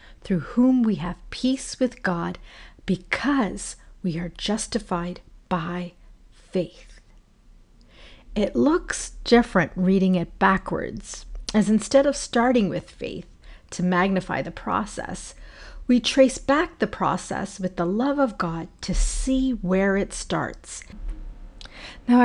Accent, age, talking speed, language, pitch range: American, 40-59, 120 wpm, English, 180-235 Hz